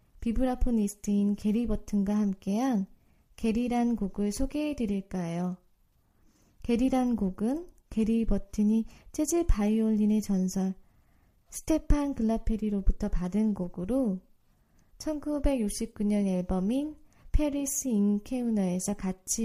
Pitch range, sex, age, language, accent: 205-250 Hz, female, 20-39, Korean, native